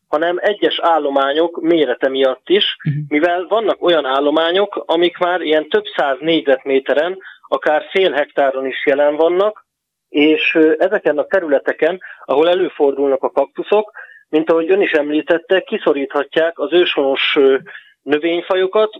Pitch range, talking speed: 140-175 Hz, 125 wpm